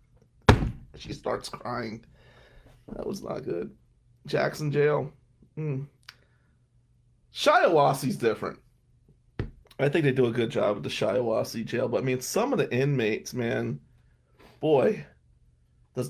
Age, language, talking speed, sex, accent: 30-49, English, 125 wpm, male, American